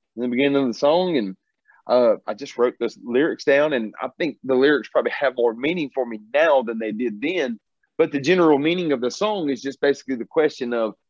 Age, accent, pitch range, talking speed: 40-59, American, 125-180 Hz, 230 wpm